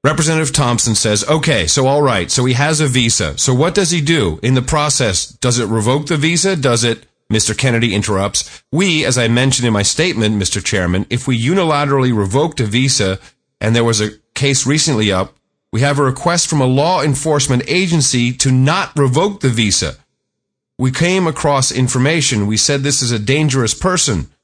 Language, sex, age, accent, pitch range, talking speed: English, male, 40-59, American, 115-150 Hz, 190 wpm